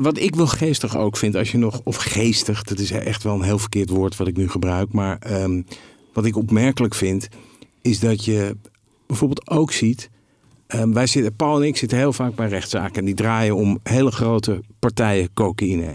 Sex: male